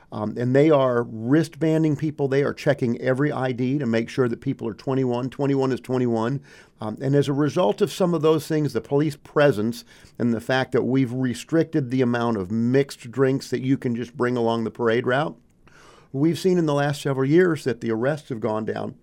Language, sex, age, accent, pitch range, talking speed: English, male, 50-69, American, 115-145 Hz, 210 wpm